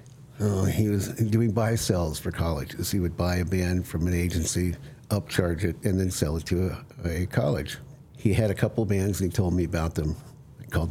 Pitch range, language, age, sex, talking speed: 90-120 Hz, English, 60-79, male, 215 wpm